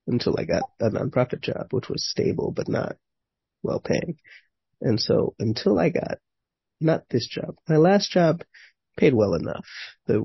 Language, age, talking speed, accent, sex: English, 30-49, 160 wpm, American, male